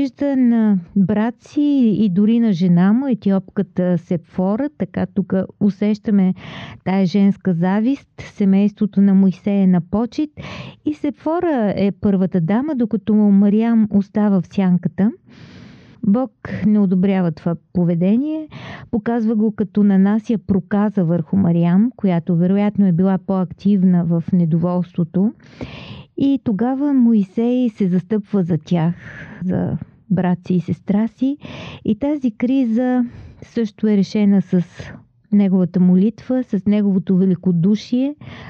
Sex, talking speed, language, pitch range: female, 115 wpm, Bulgarian, 185-230 Hz